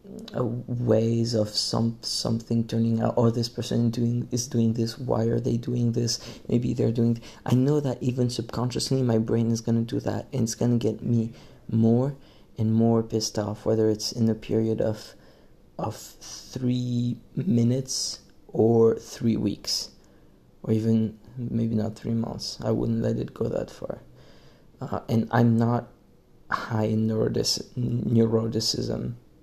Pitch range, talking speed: 110-120 Hz, 165 wpm